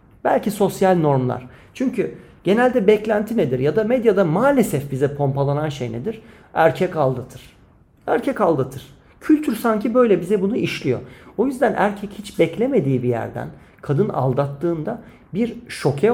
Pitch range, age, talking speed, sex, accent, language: 135-205 Hz, 40-59, 135 wpm, male, native, Turkish